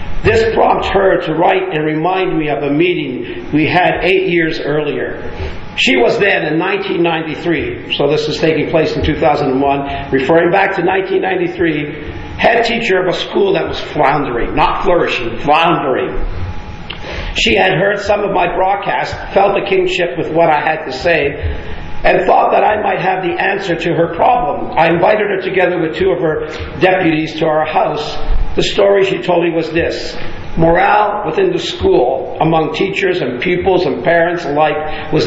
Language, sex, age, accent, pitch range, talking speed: English, male, 50-69, American, 150-190 Hz, 170 wpm